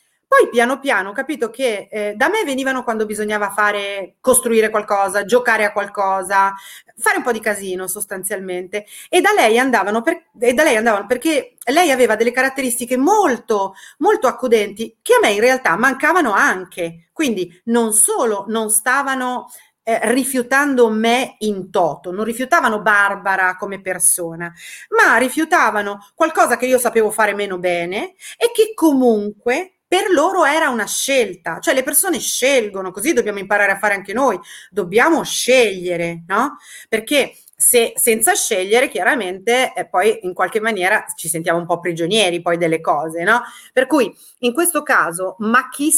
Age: 30-49